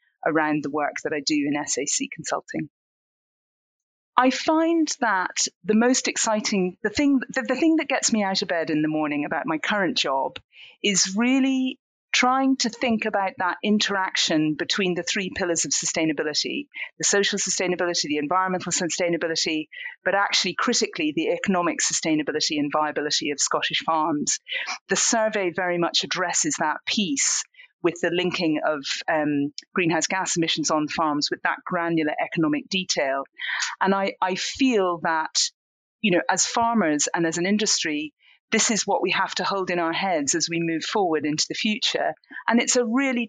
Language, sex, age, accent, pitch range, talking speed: English, female, 40-59, British, 170-255 Hz, 165 wpm